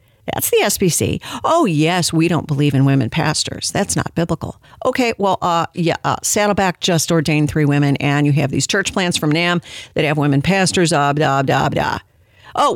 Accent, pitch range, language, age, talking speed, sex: American, 155-210 Hz, English, 50-69, 200 wpm, female